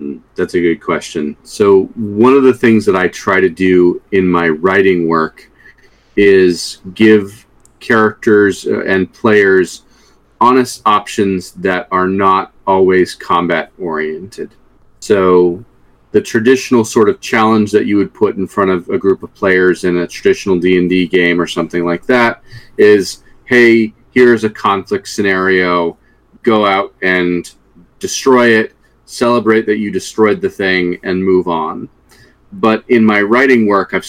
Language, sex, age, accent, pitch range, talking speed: English, male, 40-59, American, 90-110 Hz, 145 wpm